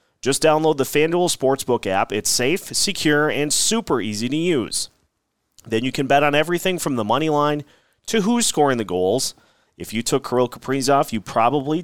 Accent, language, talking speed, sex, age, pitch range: American, English, 180 wpm, male, 30-49, 120-165 Hz